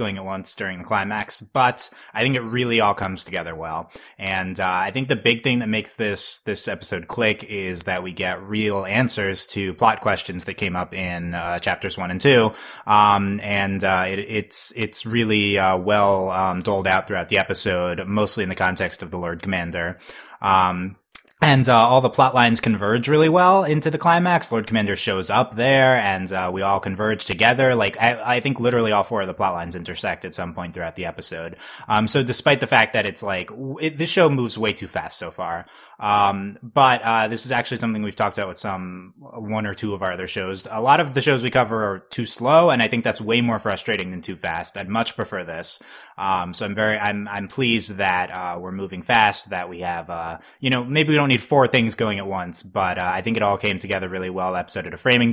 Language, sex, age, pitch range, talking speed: English, male, 20-39, 95-120 Hz, 230 wpm